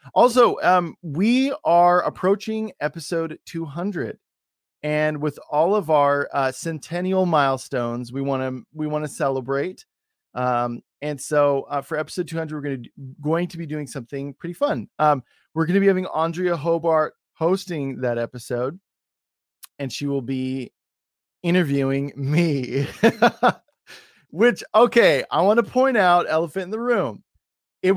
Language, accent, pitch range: English, American, 135-185 Hz